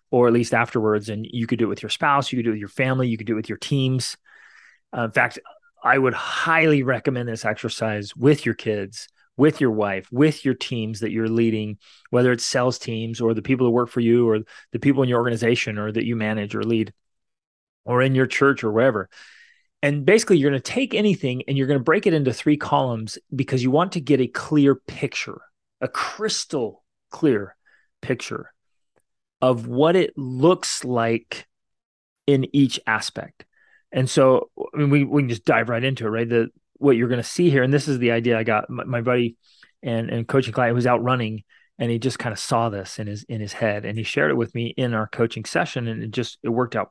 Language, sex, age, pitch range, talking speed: English, male, 30-49, 110-135 Hz, 225 wpm